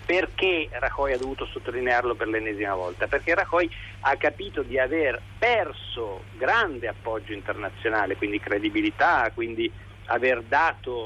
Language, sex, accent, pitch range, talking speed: Italian, male, native, 110-185 Hz, 125 wpm